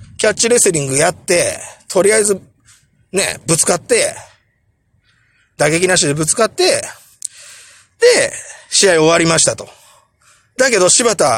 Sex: male